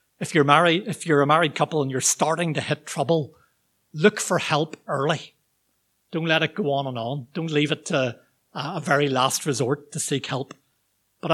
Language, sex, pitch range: English, male, 130-155 Hz